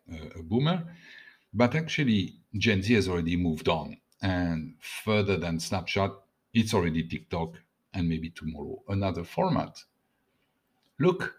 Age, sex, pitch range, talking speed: 50-69, male, 85-115 Hz, 120 wpm